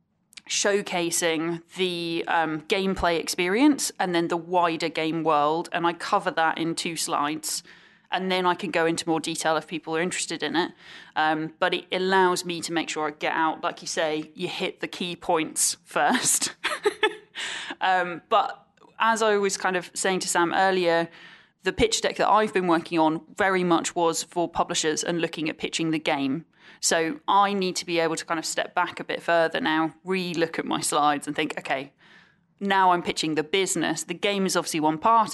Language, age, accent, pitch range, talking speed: English, 20-39, British, 160-195 Hz, 195 wpm